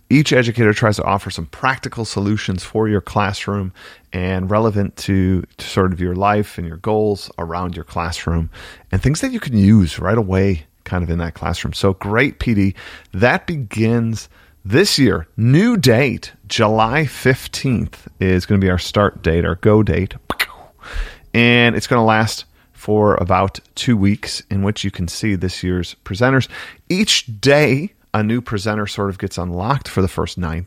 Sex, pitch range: male, 95-120 Hz